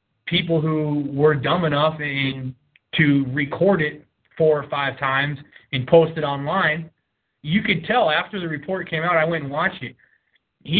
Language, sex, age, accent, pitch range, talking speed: English, male, 20-39, American, 135-165 Hz, 170 wpm